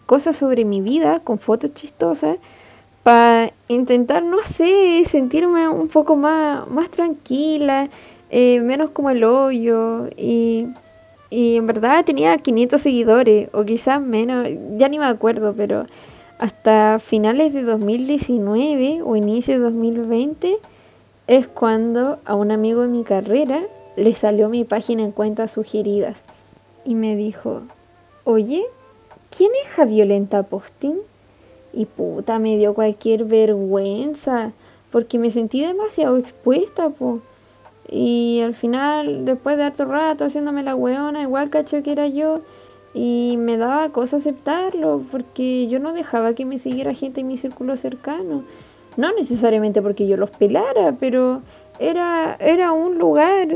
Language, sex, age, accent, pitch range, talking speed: Spanish, female, 10-29, Argentinian, 225-295 Hz, 140 wpm